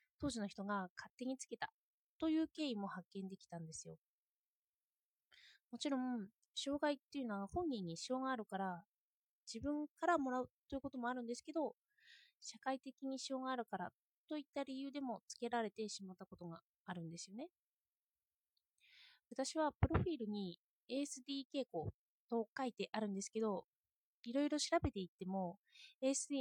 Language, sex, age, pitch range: Japanese, female, 20-39, 195-275 Hz